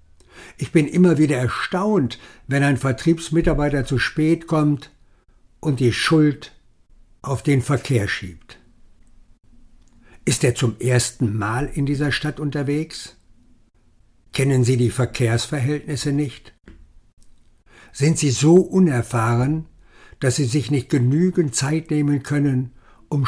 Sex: male